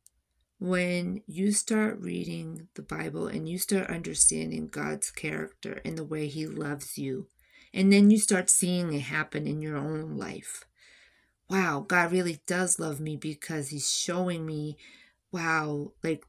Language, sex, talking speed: English, female, 150 wpm